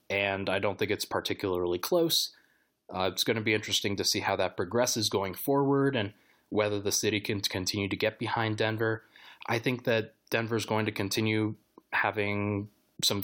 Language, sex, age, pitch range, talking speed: English, male, 20-39, 105-120 Hz, 180 wpm